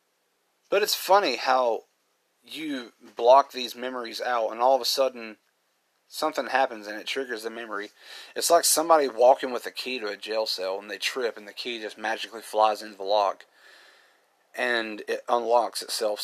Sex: male